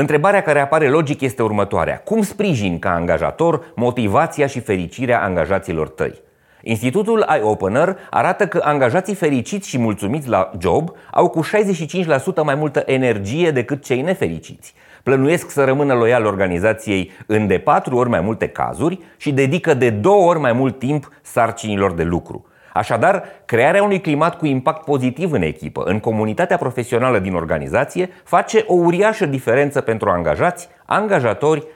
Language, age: Romanian, 30-49